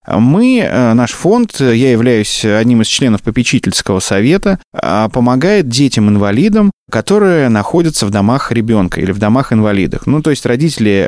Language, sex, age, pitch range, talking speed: Russian, male, 20-39, 110-145 Hz, 130 wpm